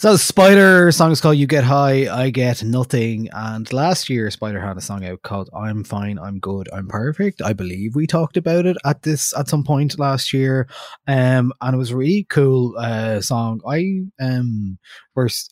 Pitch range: 105-140 Hz